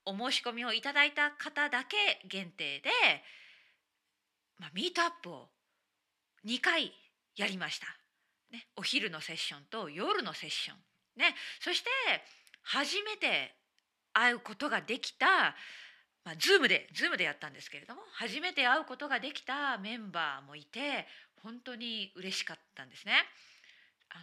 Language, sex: Japanese, female